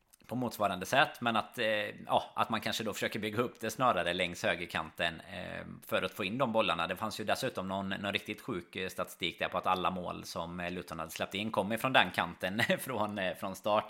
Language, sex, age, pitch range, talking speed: Swedish, male, 20-39, 90-115 Hz, 220 wpm